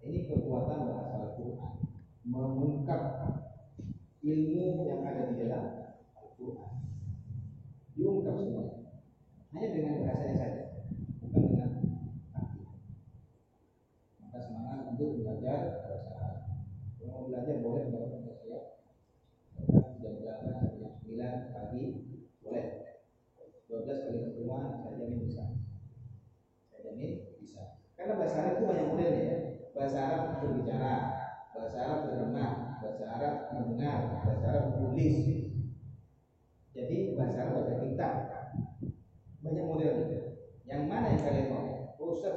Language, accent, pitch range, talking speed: English, Indonesian, 115-140 Hz, 105 wpm